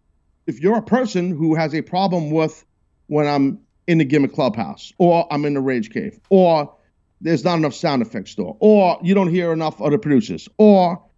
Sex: male